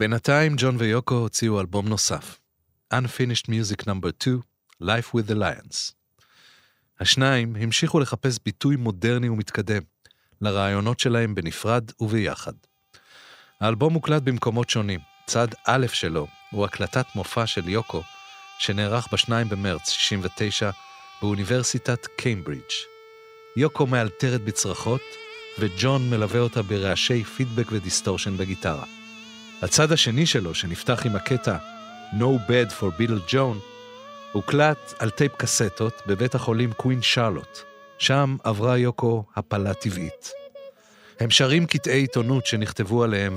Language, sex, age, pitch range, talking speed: Hebrew, male, 40-59, 110-135 Hz, 110 wpm